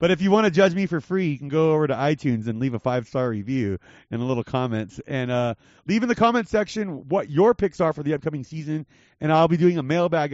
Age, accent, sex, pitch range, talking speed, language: 30-49, American, male, 130-175 Hz, 265 wpm, English